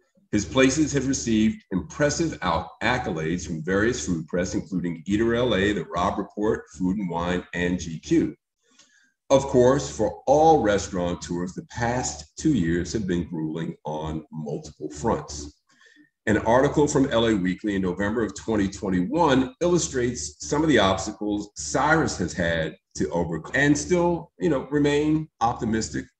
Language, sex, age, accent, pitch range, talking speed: English, male, 50-69, American, 90-135 Hz, 145 wpm